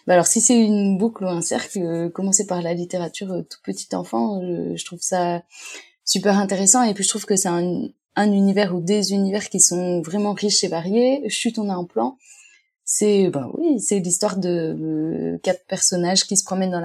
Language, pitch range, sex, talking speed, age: French, 170-210 Hz, female, 215 wpm, 20-39